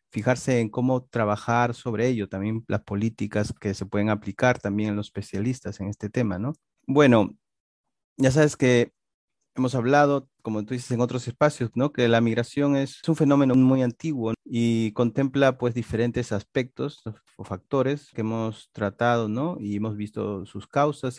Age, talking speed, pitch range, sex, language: 30-49, 165 wpm, 105-130 Hz, male, Spanish